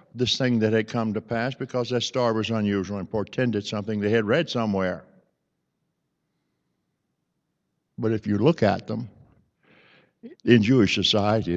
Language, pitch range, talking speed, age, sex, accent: English, 105-160 Hz, 145 wpm, 60-79, male, American